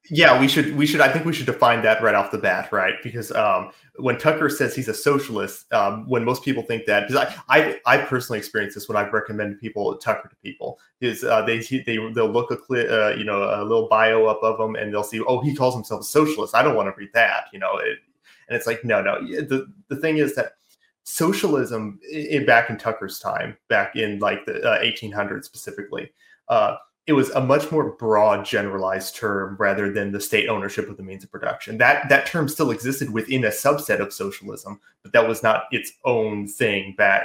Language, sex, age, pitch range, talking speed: English, male, 20-39, 105-140 Hz, 225 wpm